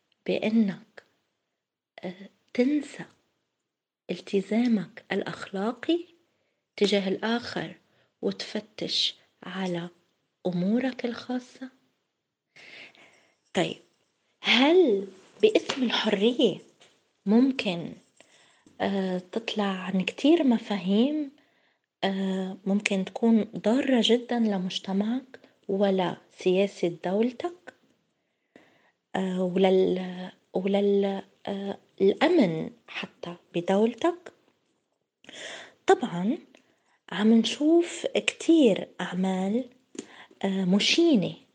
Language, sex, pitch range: Arabic, female, 195-255 Hz